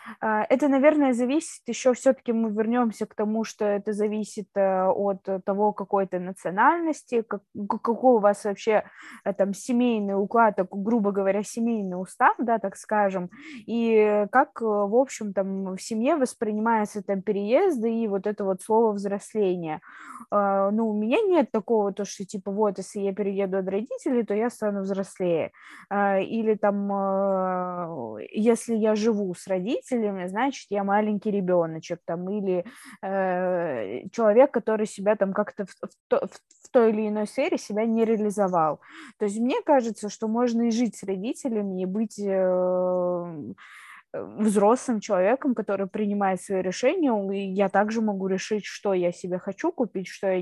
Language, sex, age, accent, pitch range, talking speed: Russian, female, 20-39, native, 195-230 Hz, 150 wpm